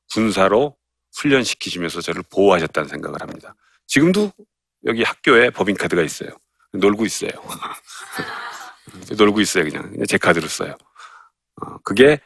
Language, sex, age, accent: Korean, male, 40-59, native